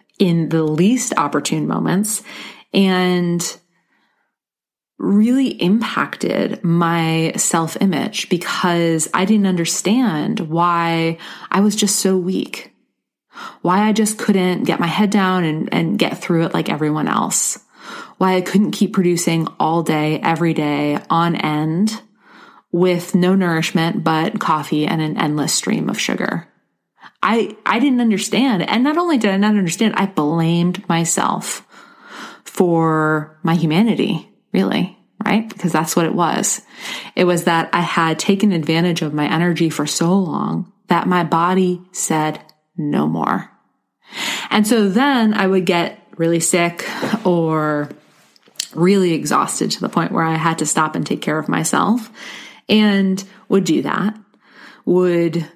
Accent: American